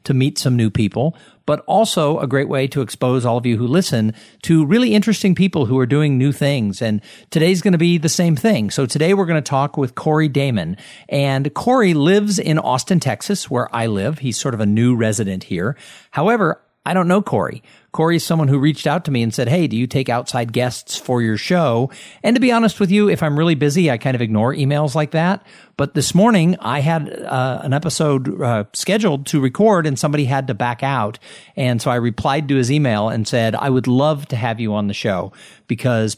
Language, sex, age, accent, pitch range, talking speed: English, male, 50-69, American, 115-155 Hz, 225 wpm